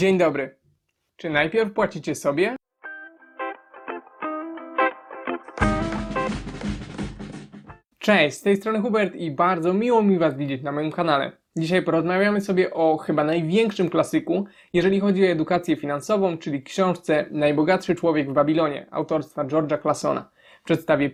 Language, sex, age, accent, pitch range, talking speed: Polish, male, 20-39, native, 155-210 Hz, 120 wpm